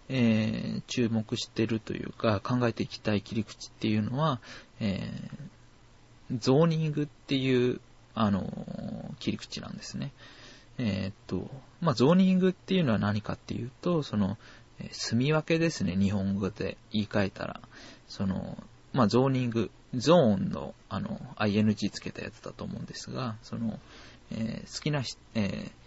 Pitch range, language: 105-140 Hz, Japanese